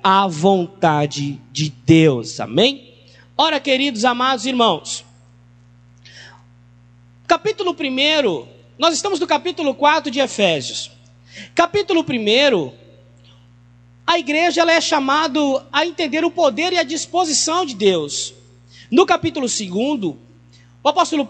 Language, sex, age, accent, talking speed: Portuguese, male, 20-39, Brazilian, 110 wpm